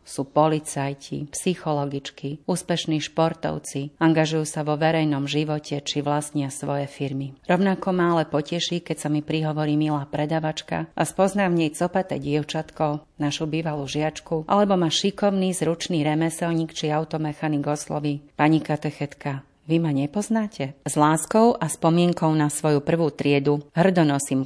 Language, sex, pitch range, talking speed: Slovak, female, 145-165 Hz, 130 wpm